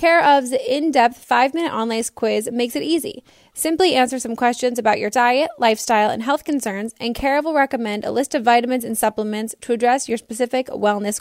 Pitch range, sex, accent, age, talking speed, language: 225-280 Hz, female, American, 10-29, 195 wpm, English